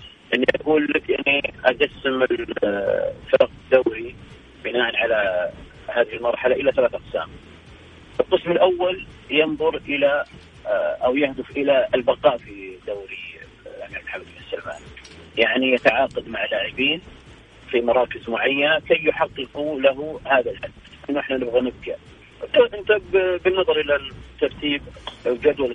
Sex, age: male, 40-59